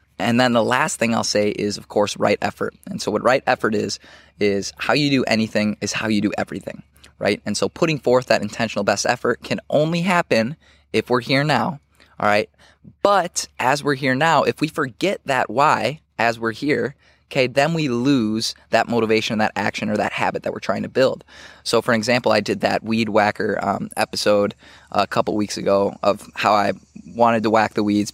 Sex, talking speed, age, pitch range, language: male, 205 wpm, 20-39, 105-125 Hz, English